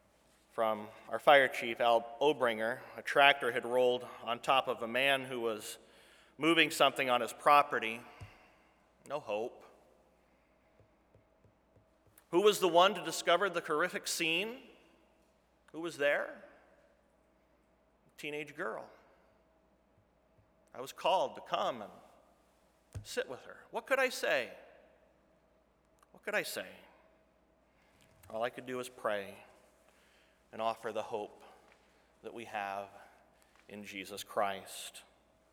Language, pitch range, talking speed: English, 120-190 Hz, 120 wpm